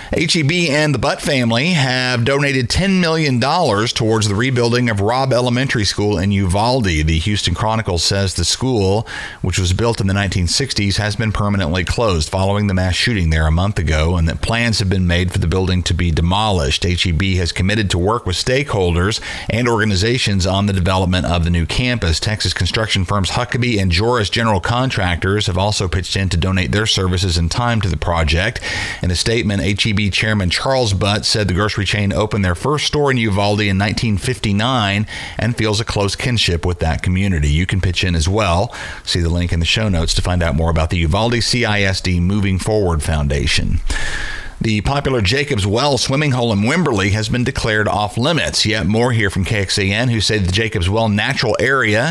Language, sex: English, male